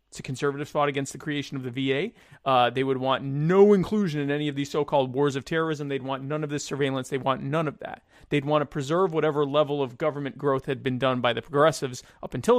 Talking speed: 250 wpm